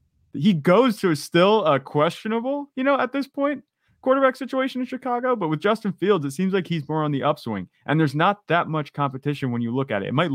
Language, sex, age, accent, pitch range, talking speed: English, male, 30-49, American, 120-160 Hz, 245 wpm